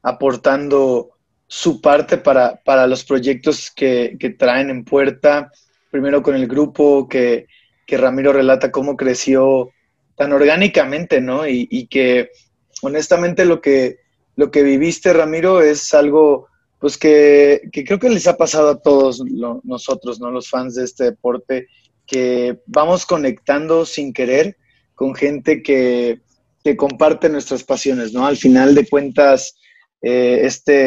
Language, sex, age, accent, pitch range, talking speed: Spanish, male, 20-39, Mexican, 130-170 Hz, 145 wpm